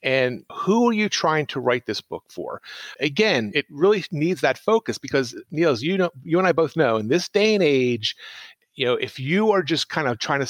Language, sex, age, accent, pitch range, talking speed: English, male, 40-59, American, 120-180 Hz, 230 wpm